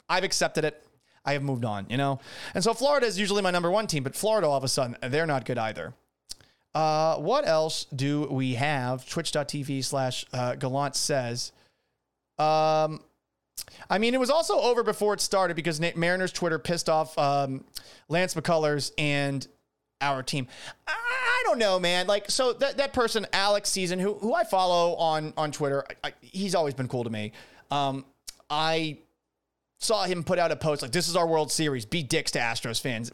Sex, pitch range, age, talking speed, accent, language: male, 135-180 Hz, 30-49, 190 wpm, American, English